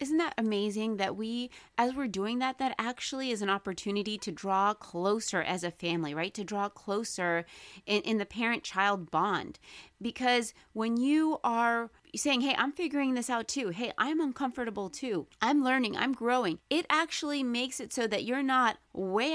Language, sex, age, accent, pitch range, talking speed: English, female, 30-49, American, 195-255 Hz, 175 wpm